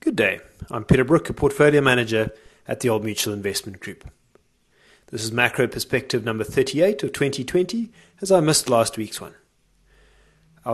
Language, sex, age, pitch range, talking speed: English, male, 30-49, 115-165 Hz, 160 wpm